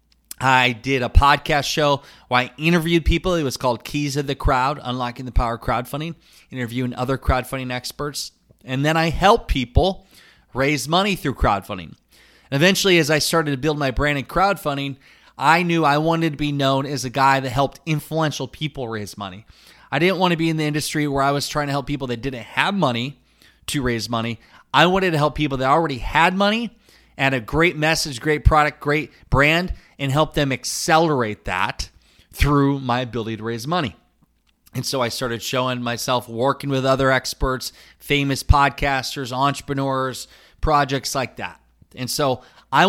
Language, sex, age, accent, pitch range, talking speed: English, male, 20-39, American, 120-150 Hz, 180 wpm